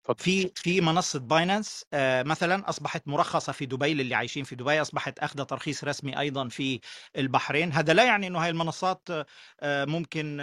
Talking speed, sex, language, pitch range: 150 wpm, male, Arabic, 155-195 Hz